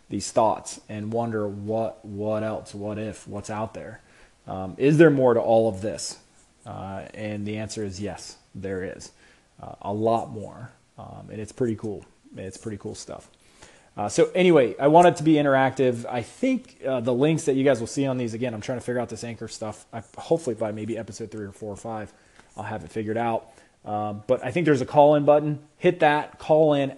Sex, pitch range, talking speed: male, 105-130 Hz, 220 wpm